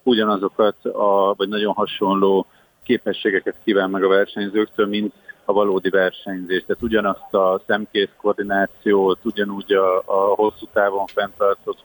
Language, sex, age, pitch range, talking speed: Hungarian, male, 50-69, 100-110 Hz, 120 wpm